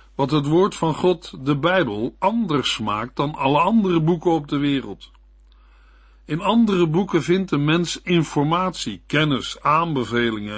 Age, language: 50-69, Dutch